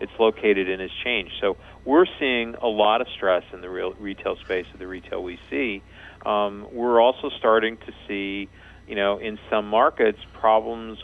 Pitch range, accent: 95-115 Hz, American